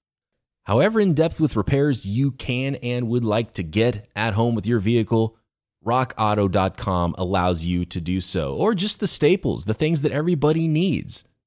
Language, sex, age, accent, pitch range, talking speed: English, male, 30-49, American, 105-155 Hz, 160 wpm